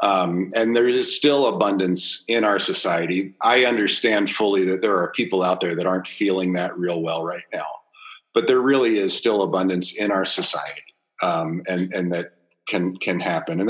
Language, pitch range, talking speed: English, 85-120 Hz, 190 wpm